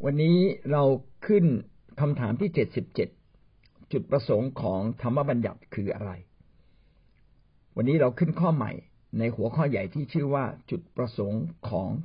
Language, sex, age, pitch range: Thai, male, 60-79, 110-150 Hz